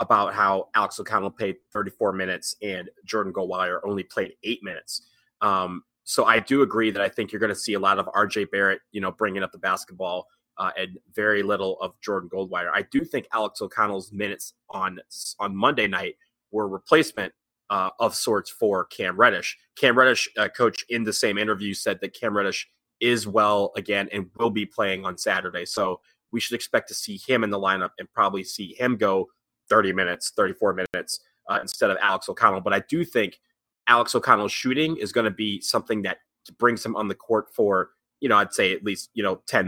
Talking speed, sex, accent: 205 wpm, male, American